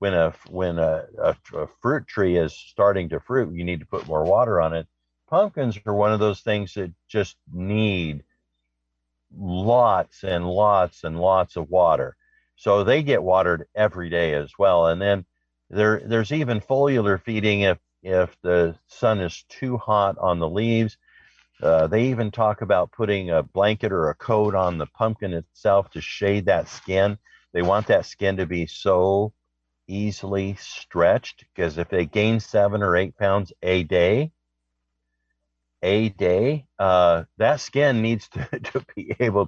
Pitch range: 85-105 Hz